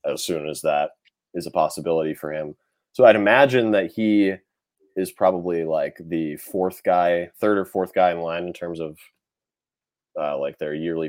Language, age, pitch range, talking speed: English, 20-39, 80-100 Hz, 180 wpm